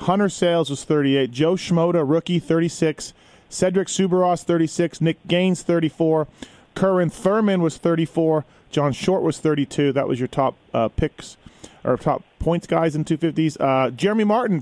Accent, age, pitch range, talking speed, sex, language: American, 40-59, 145-185 Hz, 150 wpm, male, English